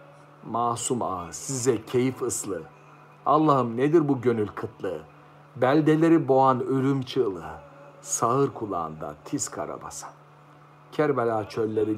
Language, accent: Turkish, native